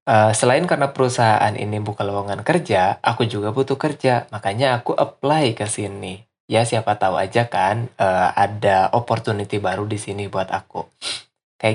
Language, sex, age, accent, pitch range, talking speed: Indonesian, male, 20-39, native, 110-130 Hz, 160 wpm